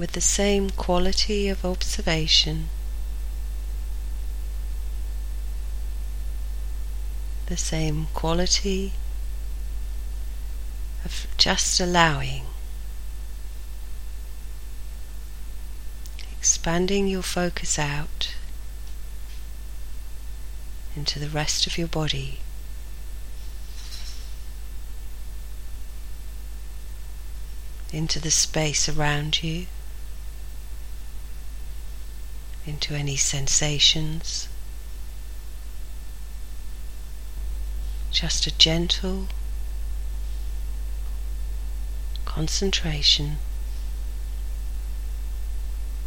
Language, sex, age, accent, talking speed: English, female, 40-59, British, 45 wpm